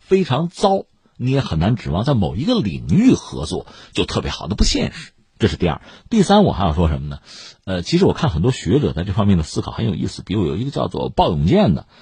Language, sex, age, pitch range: Chinese, male, 50-69, 100-160 Hz